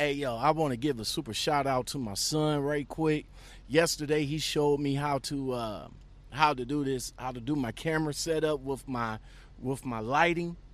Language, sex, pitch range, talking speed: English, male, 115-165 Hz, 205 wpm